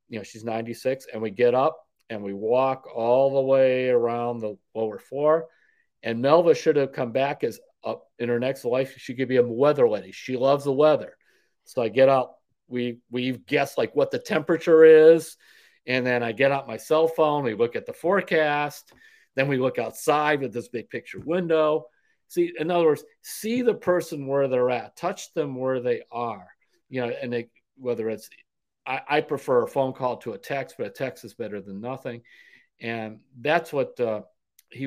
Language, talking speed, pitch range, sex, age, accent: English, 200 wpm, 120-160 Hz, male, 50-69, American